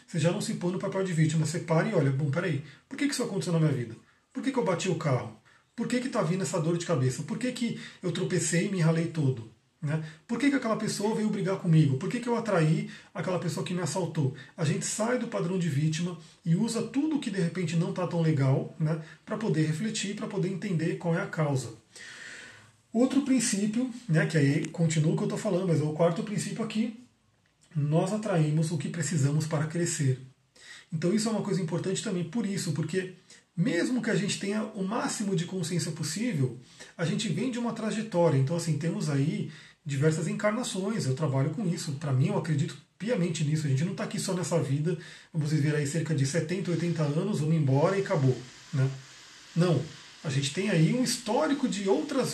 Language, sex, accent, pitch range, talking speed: Portuguese, male, Brazilian, 155-205 Hz, 210 wpm